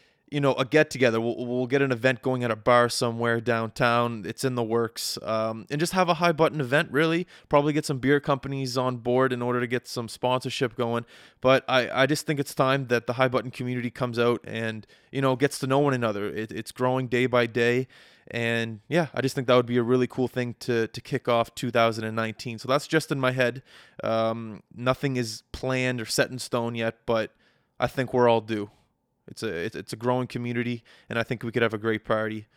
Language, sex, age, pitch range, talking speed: English, male, 20-39, 115-135 Hz, 225 wpm